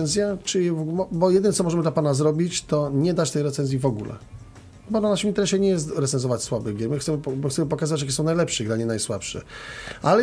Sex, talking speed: male, 200 wpm